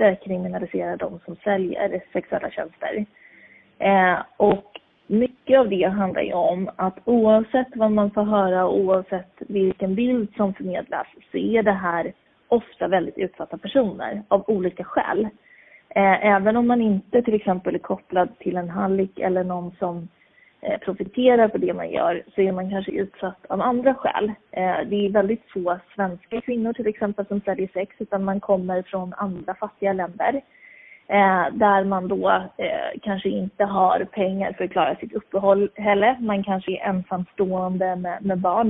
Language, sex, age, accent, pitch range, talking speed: Swedish, female, 30-49, native, 185-220 Hz, 160 wpm